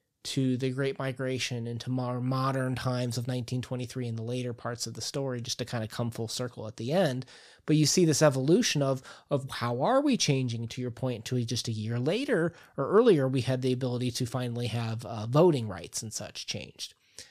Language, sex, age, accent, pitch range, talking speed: English, male, 30-49, American, 120-155 Hz, 210 wpm